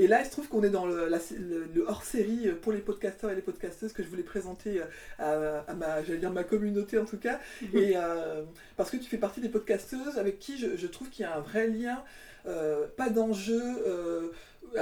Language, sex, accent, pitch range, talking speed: French, female, French, 180-230 Hz, 230 wpm